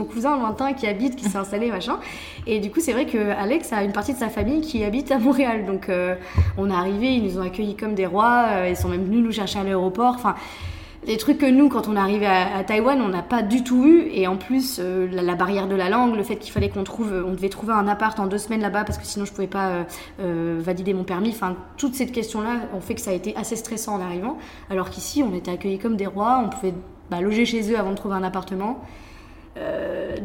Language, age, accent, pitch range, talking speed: French, 20-39, French, 190-245 Hz, 270 wpm